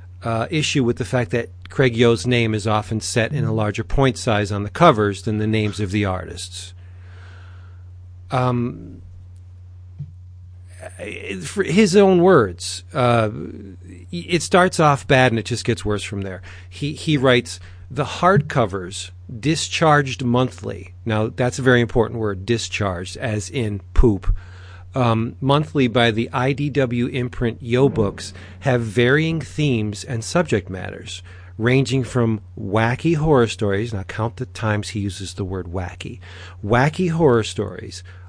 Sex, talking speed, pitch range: male, 140 wpm, 90-125 Hz